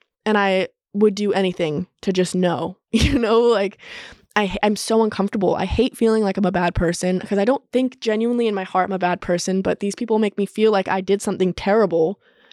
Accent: American